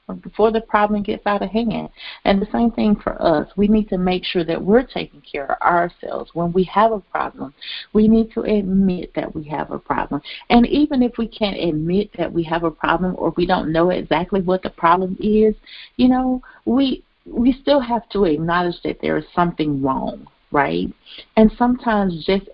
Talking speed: 200 wpm